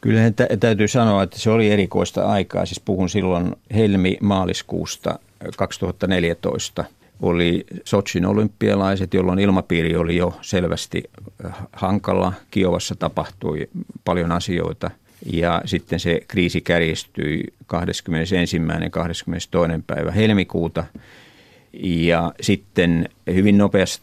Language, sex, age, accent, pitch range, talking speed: Finnish, male, 50-69, native, 85-100 Hz, 95 wpm